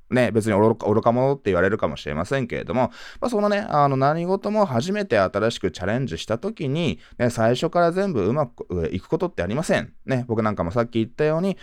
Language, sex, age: Japanese, male, 20-39